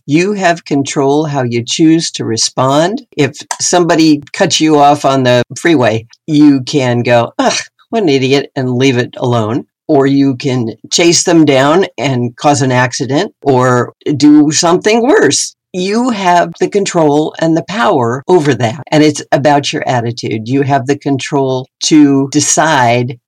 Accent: American